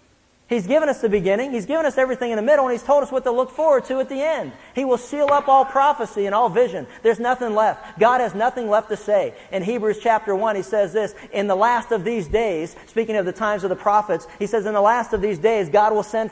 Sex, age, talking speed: male, 40-59, 270 wpm